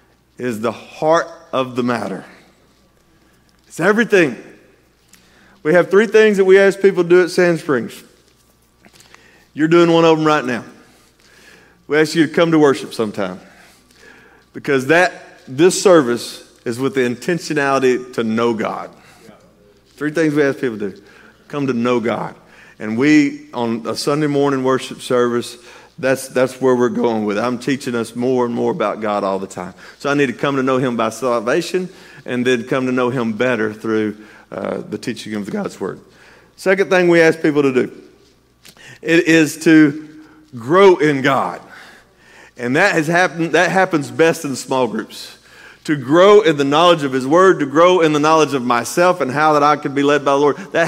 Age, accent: 40-59, American